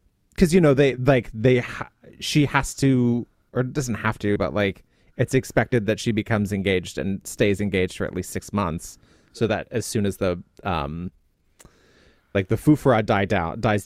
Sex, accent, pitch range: male, American, 100-135 Hz